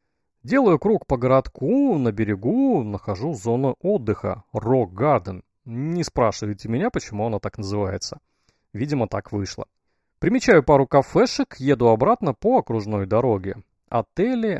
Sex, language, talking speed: male, Russian, 125 wpm